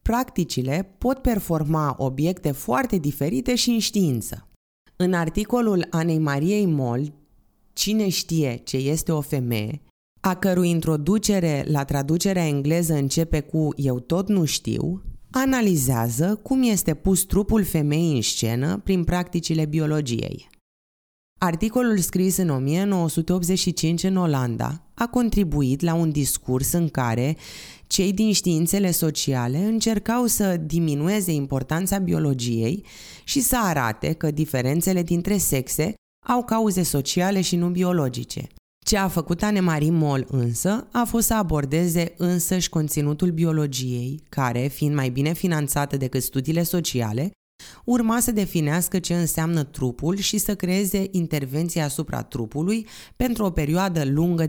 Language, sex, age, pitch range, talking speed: Romanian, female, 20-39, 140-190 Hz, 125 wpm